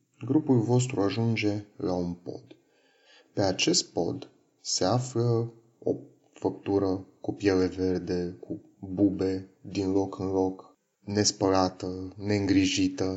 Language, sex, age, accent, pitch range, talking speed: Romanian, male, 30-49, native, 95-125 Hz, 110 wpm